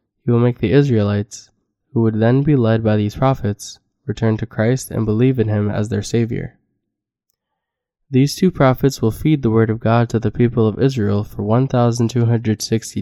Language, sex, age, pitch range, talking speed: English, male, 10-29, 105-125 Hz, 180 wpm